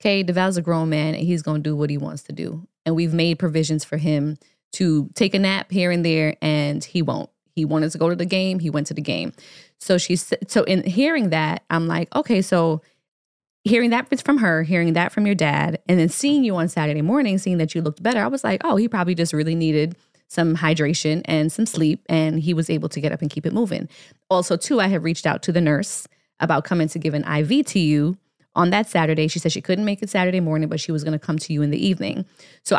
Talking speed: 255 wpm